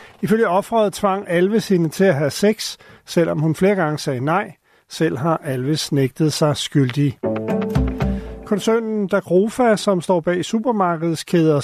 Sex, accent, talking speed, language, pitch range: male, native, 140 wpm, Danish, 150-195 Hz